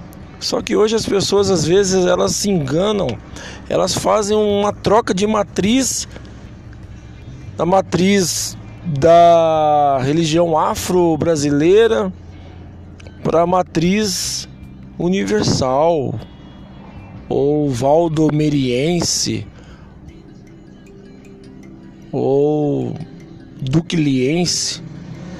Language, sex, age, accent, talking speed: Portuguese, male, 20-39, Brazilian, 70 wpm